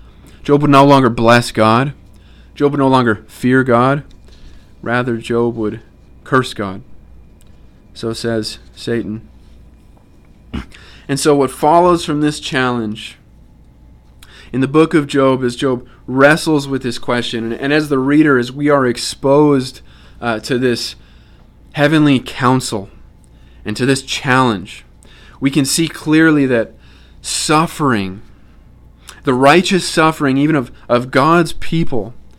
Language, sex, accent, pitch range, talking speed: English, male, American, 110-145 Hz, 130 wpm